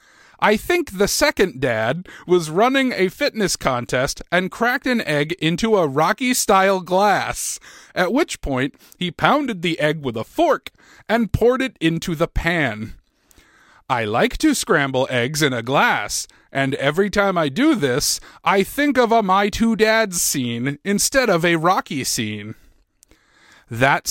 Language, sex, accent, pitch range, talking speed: English, male, American, 150-230 Hz, 155 wpm